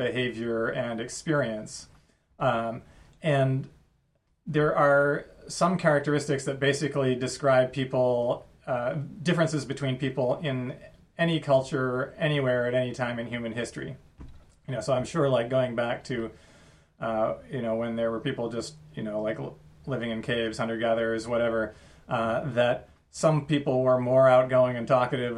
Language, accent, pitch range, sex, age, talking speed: English, American, 115-135 Hz, male, 30-49, 145 wpm